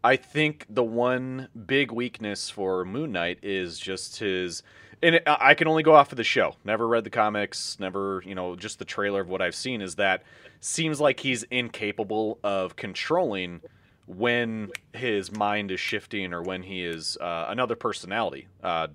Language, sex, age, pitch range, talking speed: English, male, 30-49, 95-125 Hz, 175 wpm